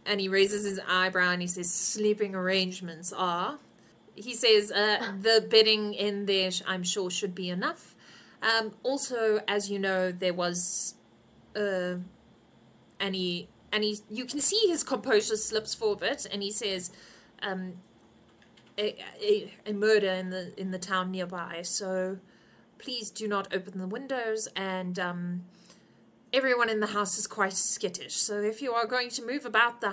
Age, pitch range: 30-49, 185-215 Hz